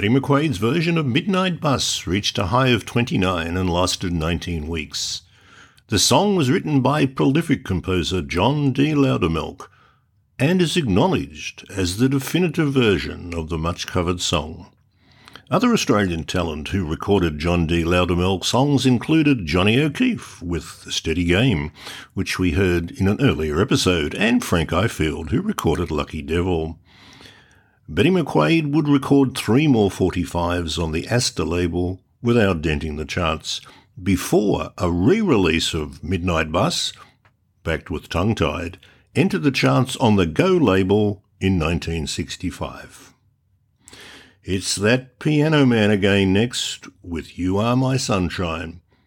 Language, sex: English, male